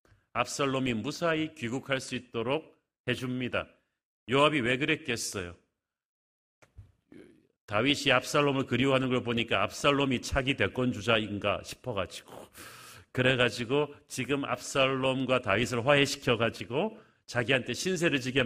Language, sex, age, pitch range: Korean, male, 40-59, 120-155 Hz